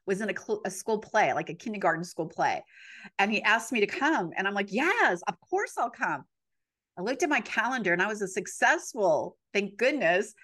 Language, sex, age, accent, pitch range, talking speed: English, female, 40-59, American, 190-255 Hz, 215 wpm